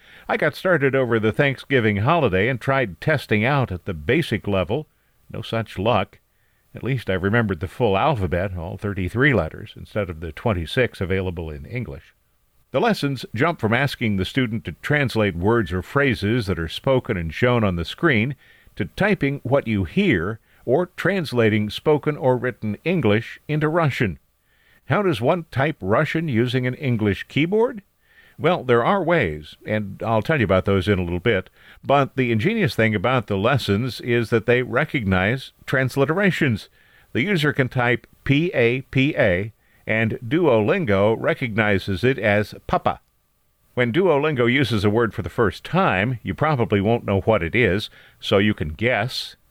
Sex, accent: male, American